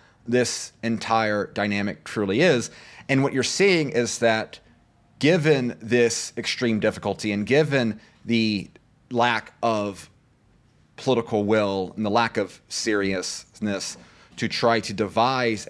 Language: English